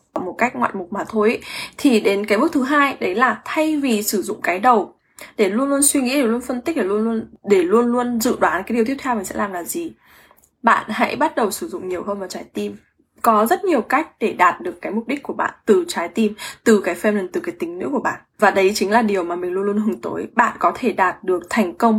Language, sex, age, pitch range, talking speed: English, female, 10-29, 195-255 Hz, 275 wpm